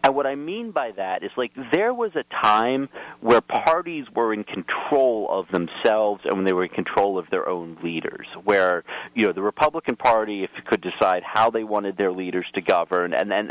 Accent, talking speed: American, 210 wpm